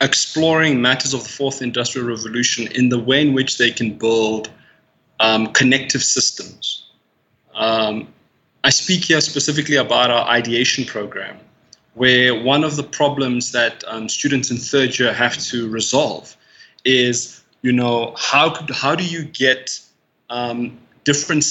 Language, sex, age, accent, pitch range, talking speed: English, male, 20-39, South African, 120-140 Hz, 145 wpm